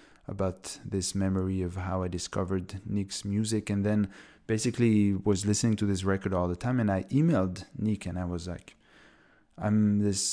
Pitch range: 95-110 Hz